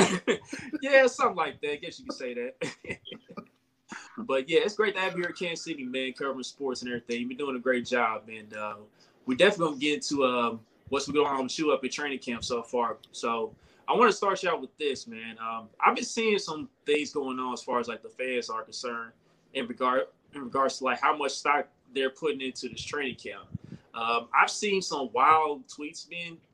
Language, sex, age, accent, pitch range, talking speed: English, male, 20-39, American, 125-190 Hz, 230 wpm